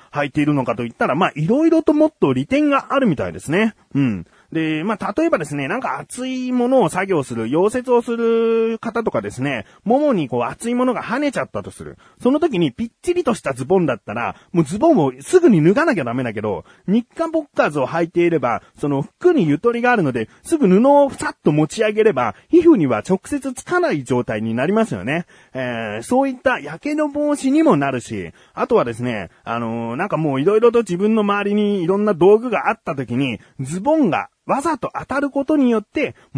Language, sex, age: Japanese, male, 30-49